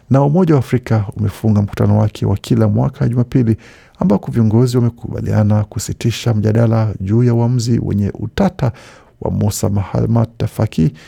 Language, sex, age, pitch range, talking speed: Swahili, male, 50-69, 105-125 Hz, 140 wpm